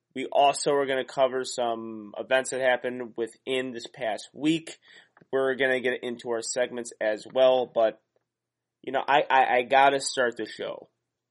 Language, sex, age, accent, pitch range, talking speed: English, male, 20-39, American, 120-145 Hz, 180 wpm